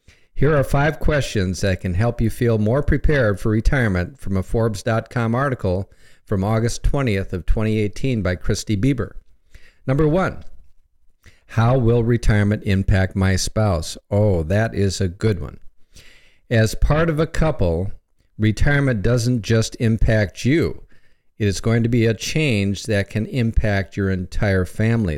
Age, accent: 50-69, American